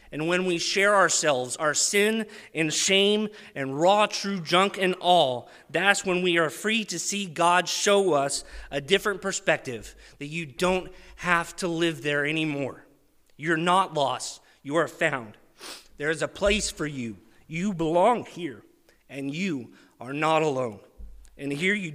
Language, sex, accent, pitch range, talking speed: English, male, American, 145-180 Hz, 160 wpm